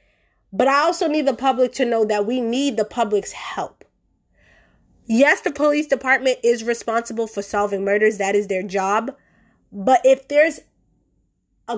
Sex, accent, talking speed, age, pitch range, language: female, American, 160 wpm, 20-39, 215-280 Hz, English